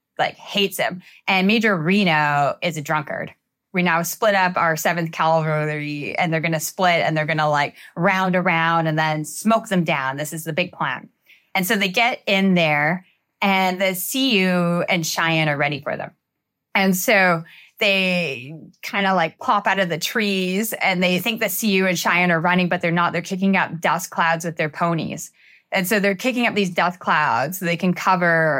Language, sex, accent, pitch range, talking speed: English, female, American, 160-200 Hz, 200 wpm